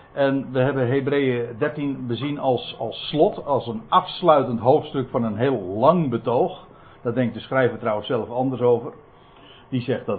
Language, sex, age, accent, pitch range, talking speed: Dutch, male, 60-79, Dutch, 125-175 Hz, 170 wpm